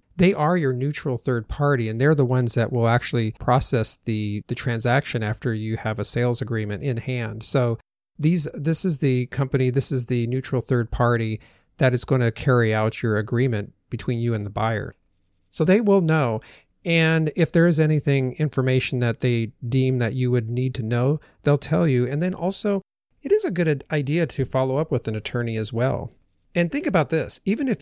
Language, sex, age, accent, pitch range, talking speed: English, male, 40-59, American, 115-150 Hz, 205 wpm